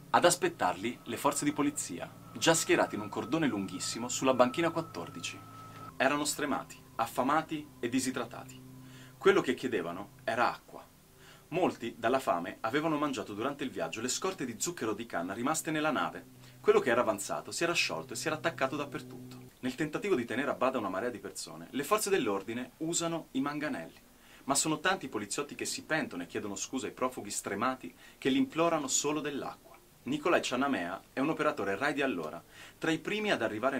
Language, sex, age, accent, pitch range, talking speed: Italian, male, 30-49, native, 125-160 Hz, 180 wpm